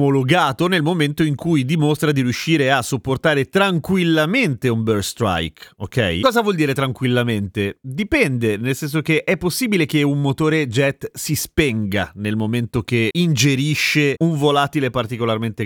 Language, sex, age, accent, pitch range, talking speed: Italian, male, 30-49, native, 130-165 Hz, 140 wpm